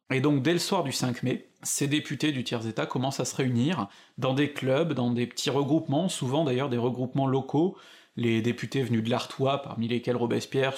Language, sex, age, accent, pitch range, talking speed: French, male, 30-49, French, 125-165 Hz, 200 wpm